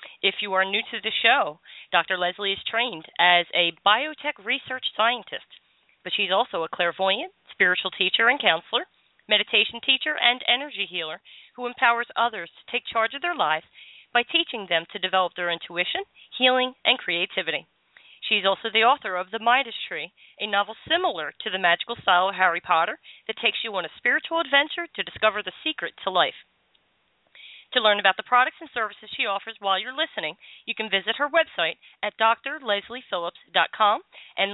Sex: female